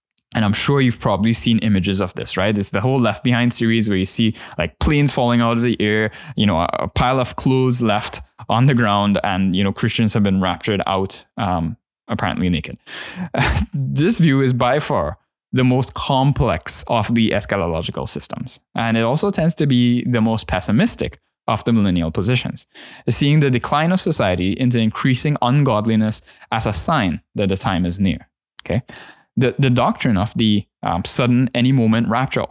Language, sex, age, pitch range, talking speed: English, male, 10-29, 100-130 Hz, 185 wpm